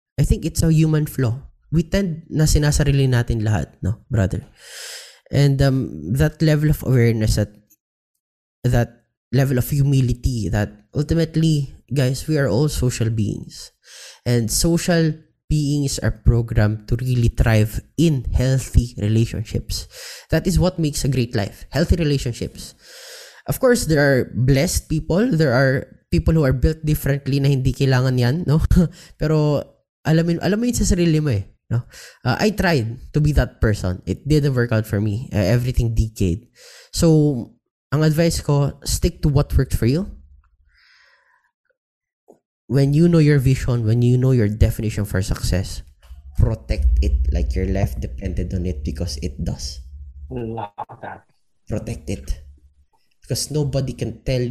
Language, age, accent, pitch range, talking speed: Filipino, 20-39, native, 105-150 Hz, 150 wpm